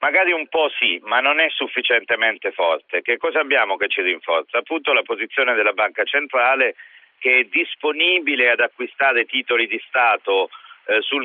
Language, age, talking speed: Italian, 50-69, 165 wpm